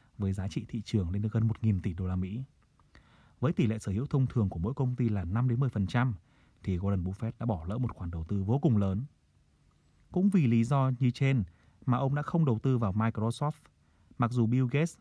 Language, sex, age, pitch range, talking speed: Vietnamese, male, 30-49, 100-130 Hz, 230 wpm